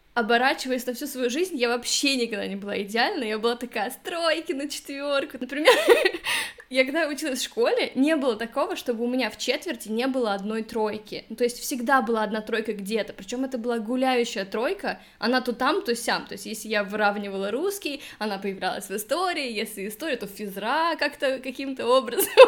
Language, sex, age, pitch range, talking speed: Russian, female, 20-39, 220-280 Hz, 185 wpm